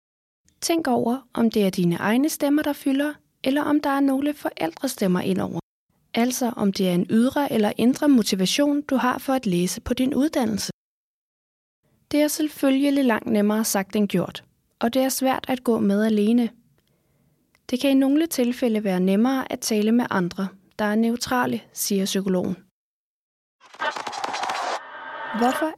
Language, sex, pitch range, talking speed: Danish, female, 210-275 Hz, 155 wpm